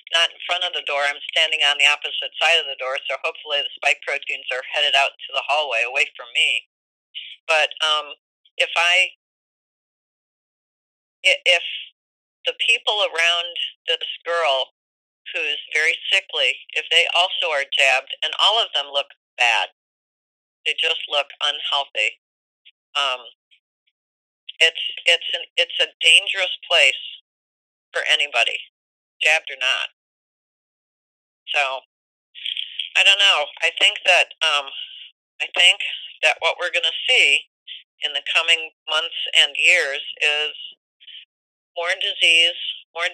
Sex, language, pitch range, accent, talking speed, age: female, English, 140-170 Hz, American, 135 wpm, 40-59